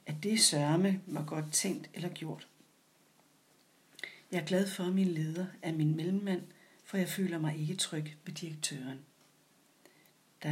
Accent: Danish